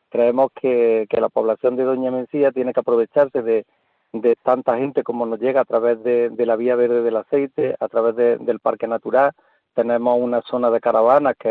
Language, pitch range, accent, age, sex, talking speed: Spanish, 115-130 Hz, Spanish, 40-59, male, 210 wpm